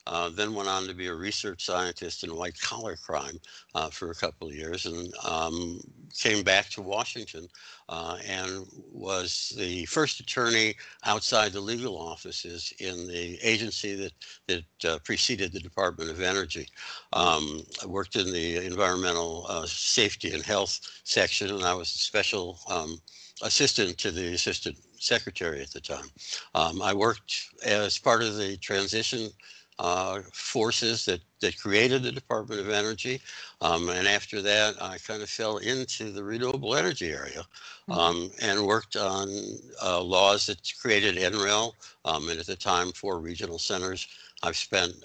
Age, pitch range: 60-79, 90-105 Hz